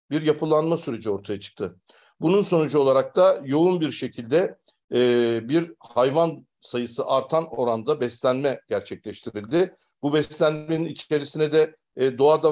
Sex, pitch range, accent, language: male, 120-150 Hz, native, Turkish